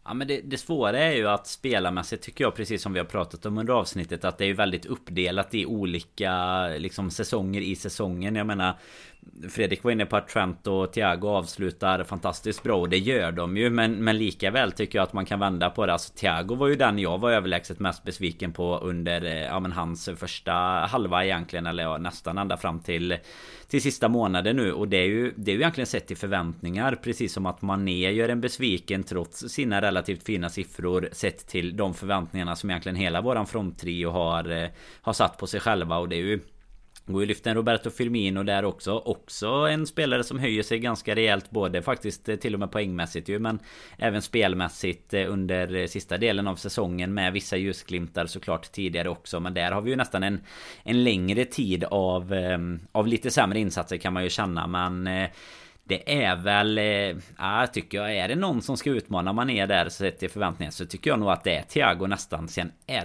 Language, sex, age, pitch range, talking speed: Swedish, male, 30-49, 90-105 Hz, 205 wpm